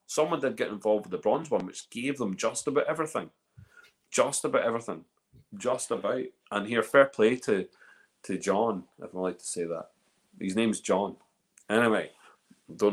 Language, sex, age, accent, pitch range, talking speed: English, male, 30-49, British, 110-175 Hz, 170 wpm